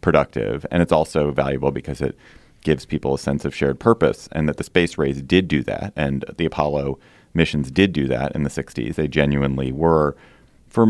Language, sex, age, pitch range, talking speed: English, male, 30-49, 70-80 Hz, 200 wpm